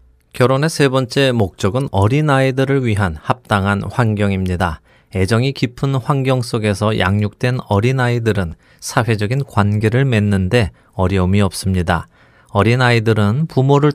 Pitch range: 95-130 Hz